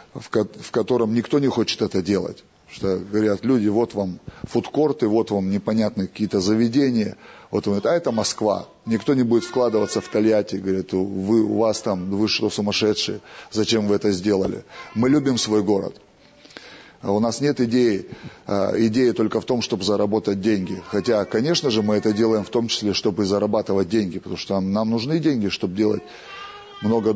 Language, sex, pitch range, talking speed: Russian, male, 105-120 Hz, 170 wpm